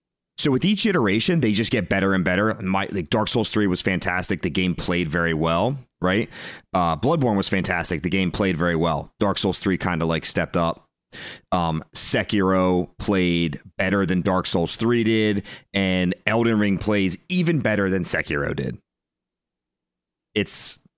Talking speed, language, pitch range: 170 wpm, English, 85-110 Hz